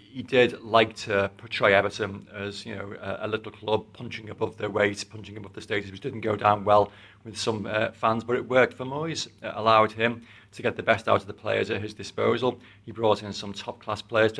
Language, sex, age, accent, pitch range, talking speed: English, male, 30-49, British, 100-115 Hz, 235 wpm